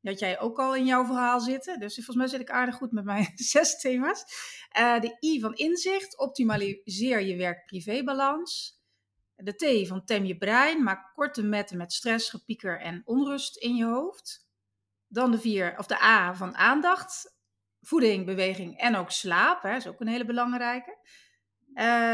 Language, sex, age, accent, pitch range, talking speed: Dutch, female, 40-59, Dutch, 200-265 Hz, 175 wpm